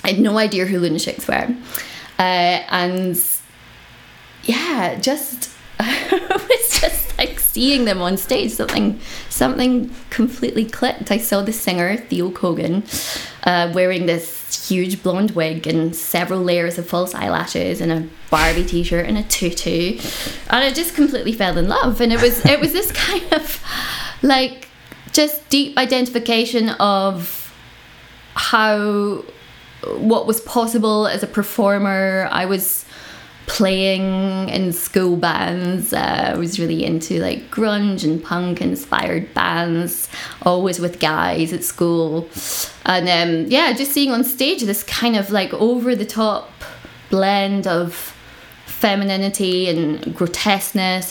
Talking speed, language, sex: 130 wpm, English, female